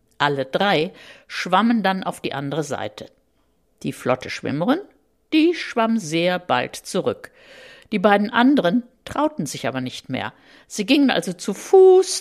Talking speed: 145 wpm